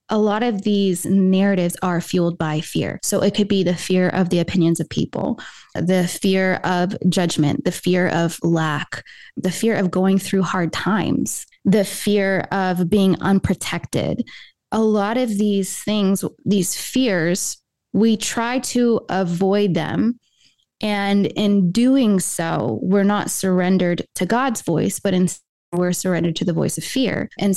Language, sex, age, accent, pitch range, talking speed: English, female, 20-39, American, 180-215 Hz, 155 wpm